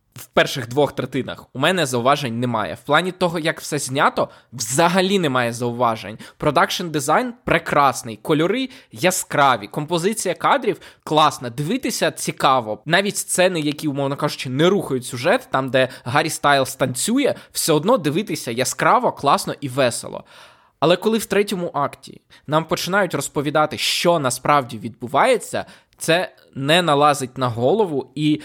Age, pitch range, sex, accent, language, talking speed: 20-39, 130-165 Hz, male, native, Ukrainian, 135 wpm